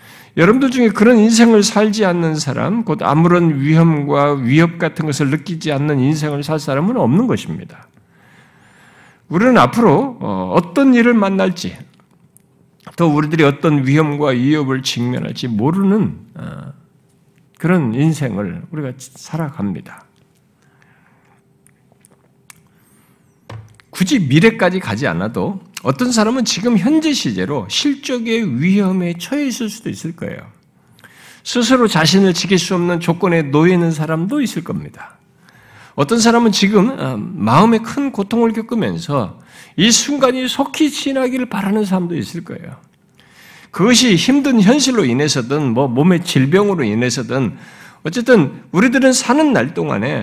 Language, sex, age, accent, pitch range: Korean, male, 50-69, native, 155-235 Hz